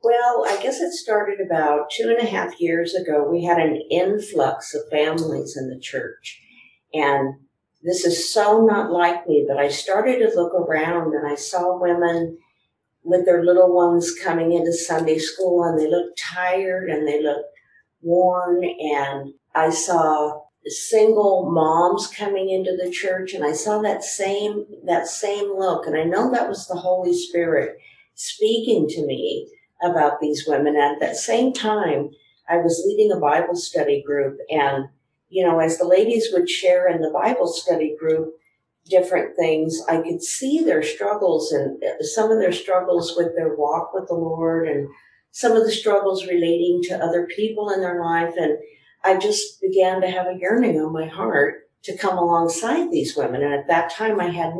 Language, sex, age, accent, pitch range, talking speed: English, female, 50-69, American, 160-200 Hz, 175 wpm